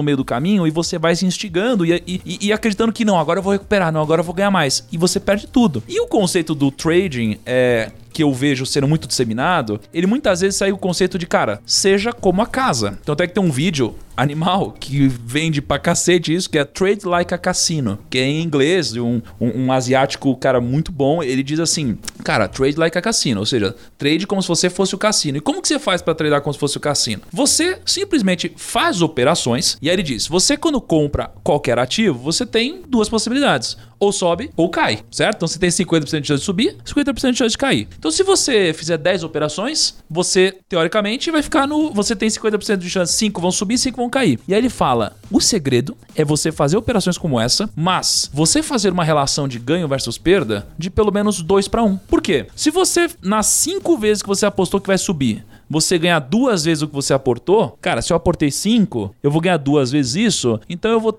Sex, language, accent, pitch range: male, Portuguese, Brazilian, 145-210 Hz